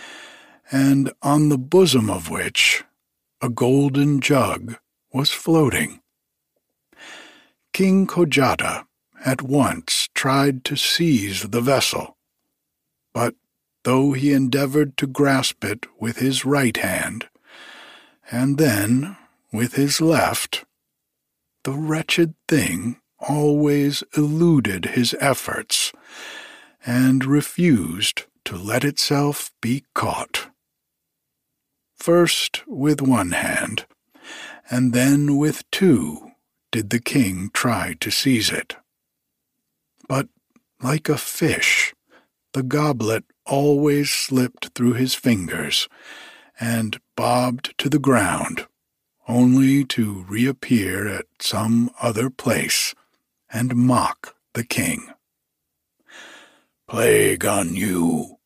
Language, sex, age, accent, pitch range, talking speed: English, male, 60-79, American, 120-150 Hz, 100 wpm